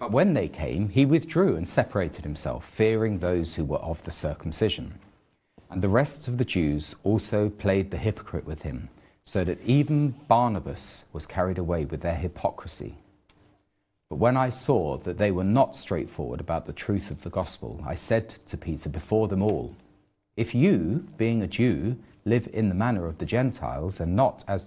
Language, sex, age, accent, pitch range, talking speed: English, male, 40-59, British, 85-115 Hz, 180 wpm